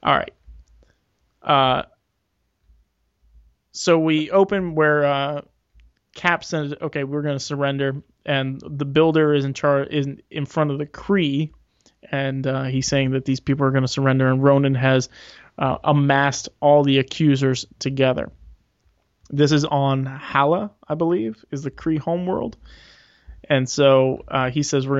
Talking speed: 145 wpm